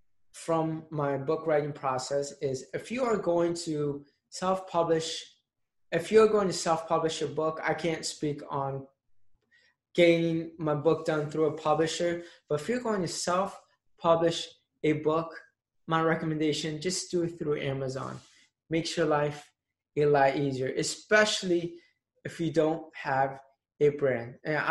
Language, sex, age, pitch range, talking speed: English, male, 20-39, 145-170 Hz, 145 wpm